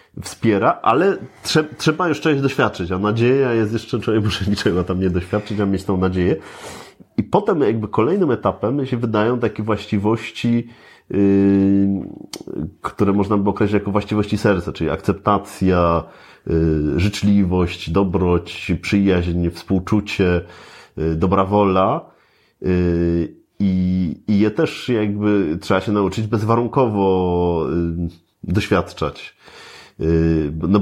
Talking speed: 115 wpm